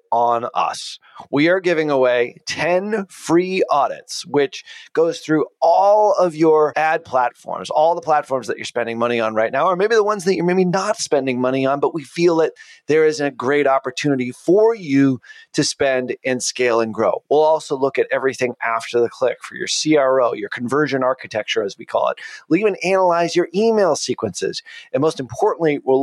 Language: English